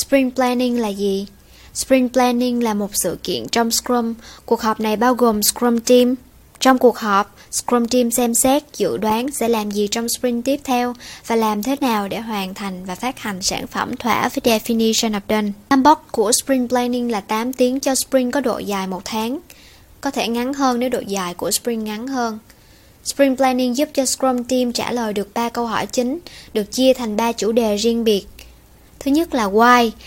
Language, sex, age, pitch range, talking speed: Vietnamese, male, 10-29, 220-255 Hz, 205 wpm